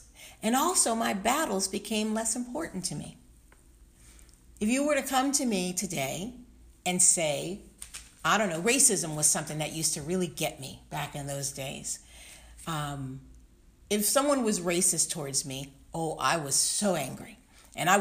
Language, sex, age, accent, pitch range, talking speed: English, female, 50-69, American, 145-200 Hz, 165 wpm